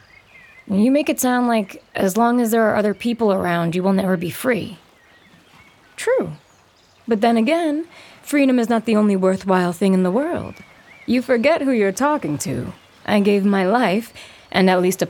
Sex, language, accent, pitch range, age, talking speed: female, English, American, 190-245 Hz, 20-39, 185 wpm